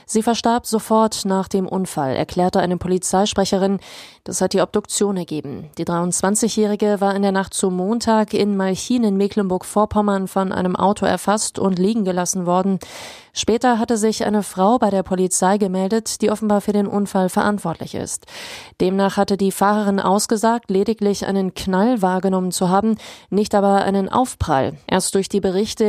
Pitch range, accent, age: 185-210 Hz, German, 30-49